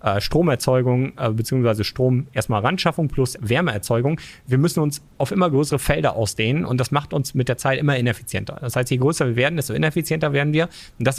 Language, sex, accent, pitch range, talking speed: German, male, German, 120-155 Hz, 195 wpm